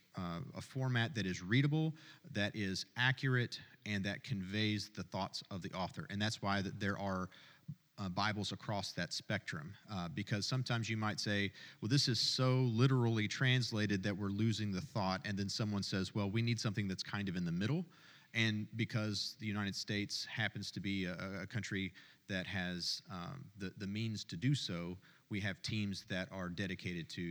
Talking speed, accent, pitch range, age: 185 wpm, American, 100-125 Hz, 40-59